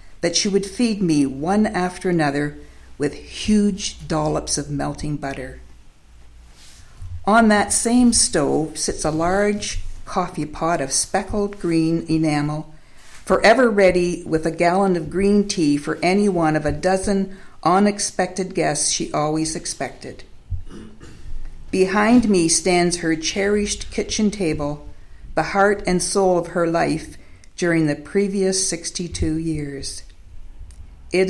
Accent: American